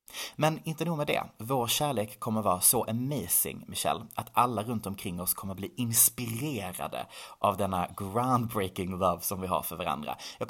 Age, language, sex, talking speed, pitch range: 30-49, Swedish, male, 170 wpm, 95-120 Hz